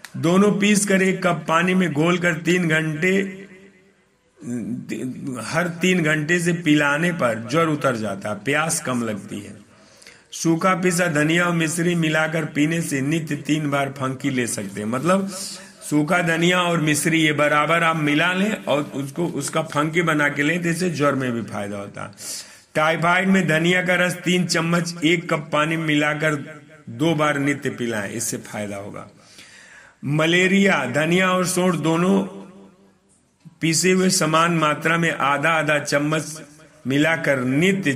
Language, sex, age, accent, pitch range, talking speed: Hindi, male, 50-69, native, 145-175 Hz, 155 wpm